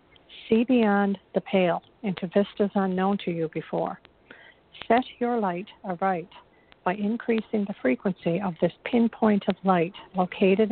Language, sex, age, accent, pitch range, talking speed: English, female, 50-69, American, 175-210 Hz, 135 wpm